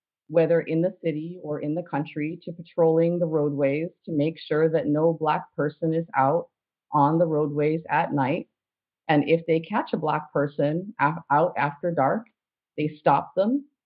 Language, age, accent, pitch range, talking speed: English, 40-59, American, 150-170 Hz, 170 wpm